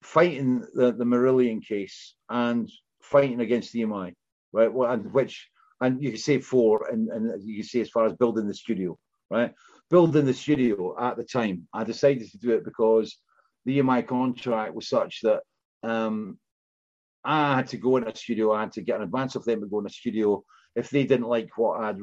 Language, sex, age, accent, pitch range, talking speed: English, male, 50-69, British, 110-140 Hz, 205 wpm